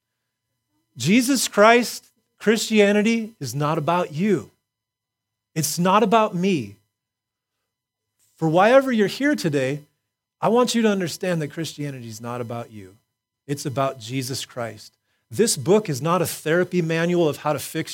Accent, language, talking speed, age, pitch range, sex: American, English, 140 wpm, 30-49, 135-225 Hz, male